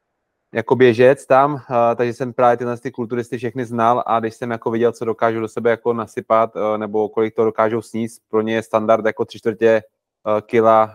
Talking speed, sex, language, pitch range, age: 205 wpm, male, Czech, 110-120 Hz, 20-39